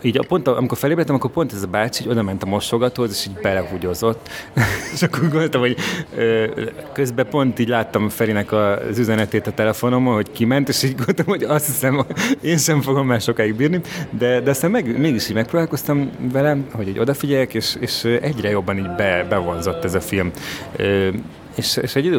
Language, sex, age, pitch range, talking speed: Hungarian, male, 30-49, 105-130 Hz, 190 wpm